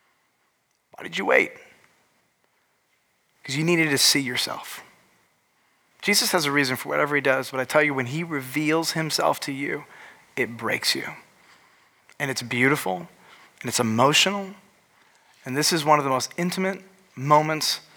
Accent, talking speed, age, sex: American, 155 wpm, 30-49, male